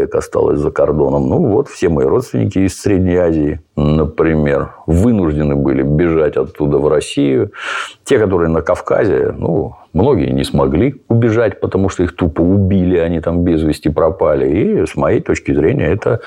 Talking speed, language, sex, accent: 160 wpm, Russian, male, native